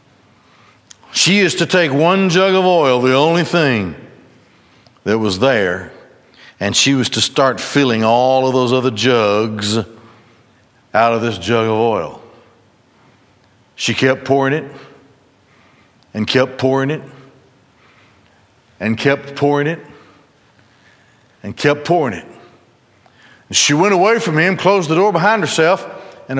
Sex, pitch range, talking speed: male, 125-200 Hz, 130 wpm